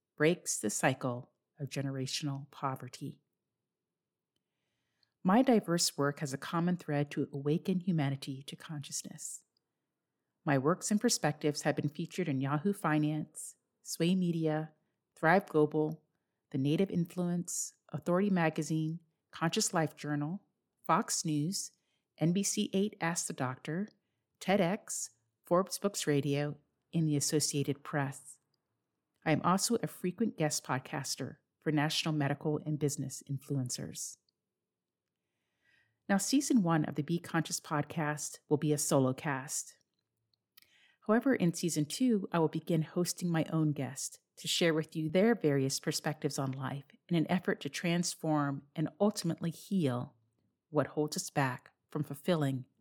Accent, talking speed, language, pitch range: American, 130 wpm, English, 145-180 Hz